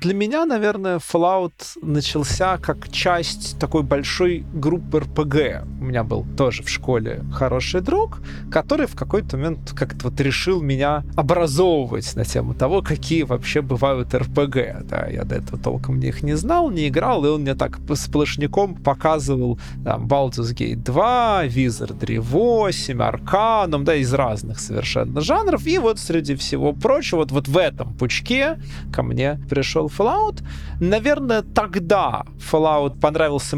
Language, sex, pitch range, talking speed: Russian, male, 115-160 Hz, 140 wpm